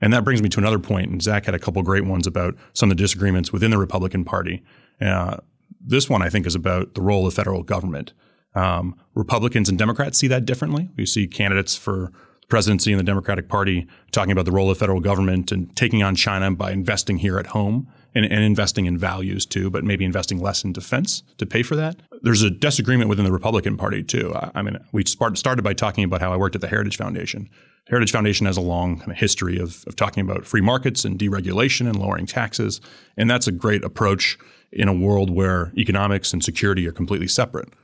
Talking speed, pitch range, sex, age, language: 220 wpm, 95-110 Hz, male, 30-49, English